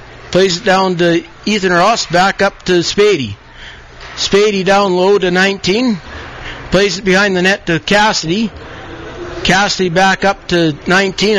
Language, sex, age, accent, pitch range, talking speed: English, male, 50-69, American, 165-200 Hz, 140 wpm